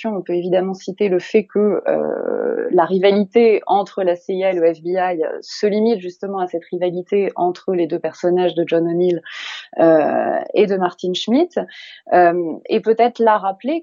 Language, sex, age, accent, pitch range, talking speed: French, female, 20-39, French, 180-235 Hz, 165 wpm